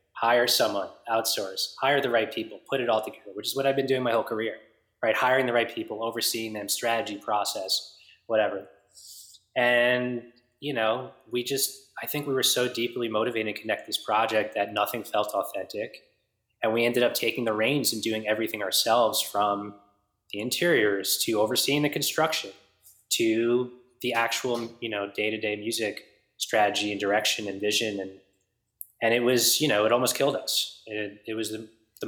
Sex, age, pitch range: male, 20-39, 100-115 Hz